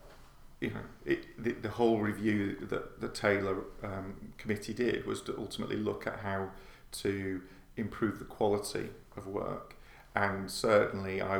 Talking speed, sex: 140 wpm, male